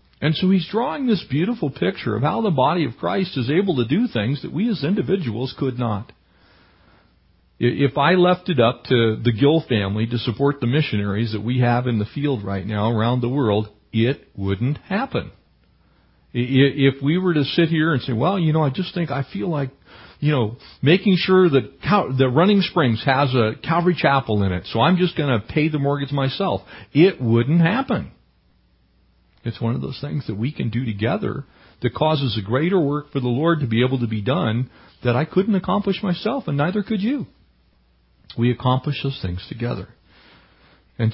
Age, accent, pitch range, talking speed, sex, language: 50-69, American, 110-170 Hz, 195 wpm, male, English